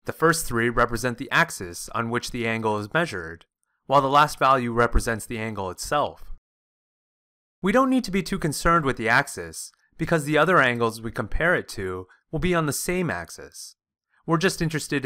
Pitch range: 110-155 Hz